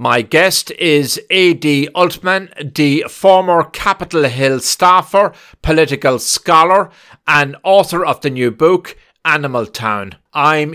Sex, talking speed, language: male, 115 wpm, English